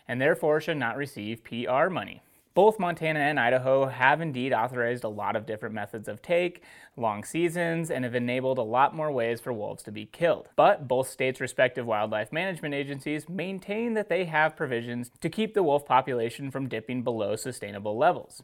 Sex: male